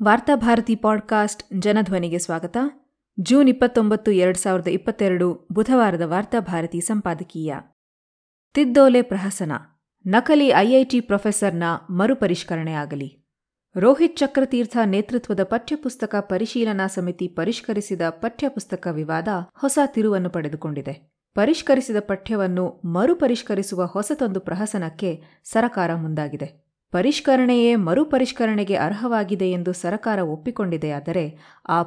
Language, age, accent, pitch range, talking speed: Kannada, 20-39, native, 175-230 Hz, 85 wpm